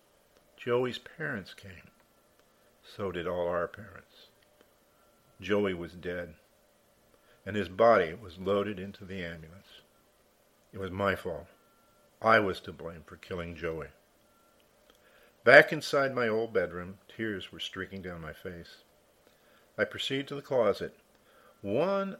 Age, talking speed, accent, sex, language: 50-69, 125 wpm, American, male, English